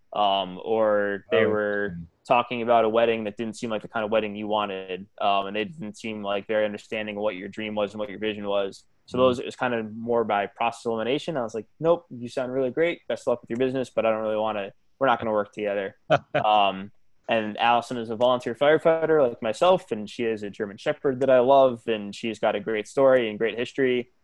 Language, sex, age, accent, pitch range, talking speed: English, male, 20-39, American, 105-125 Hz, 245 wpm